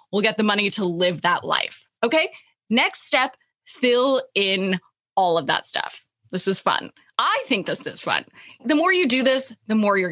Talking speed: 195 wpm